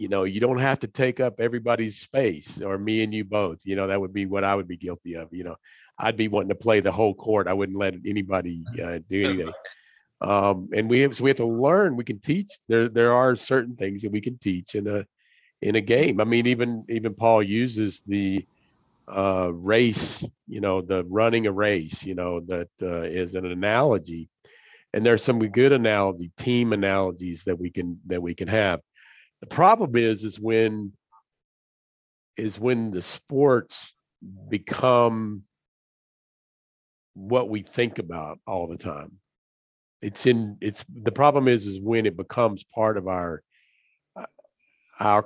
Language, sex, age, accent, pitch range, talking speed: English, male, 50-69, American, 95-115 Hz, 185 wpm